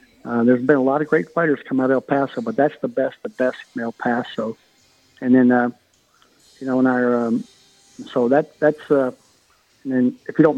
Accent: American